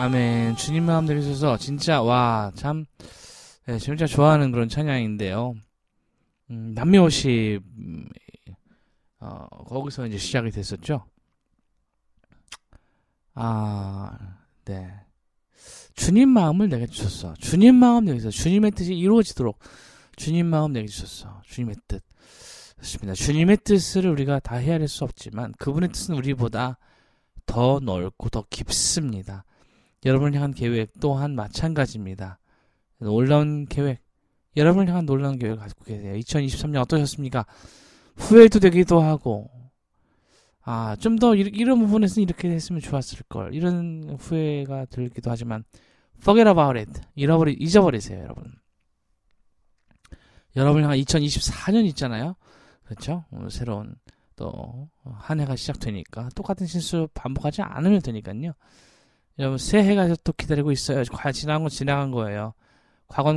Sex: male